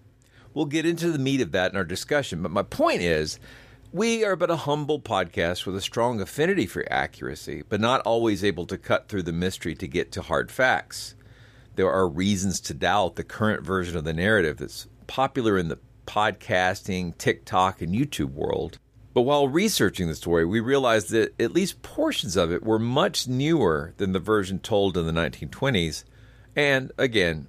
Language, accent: English, American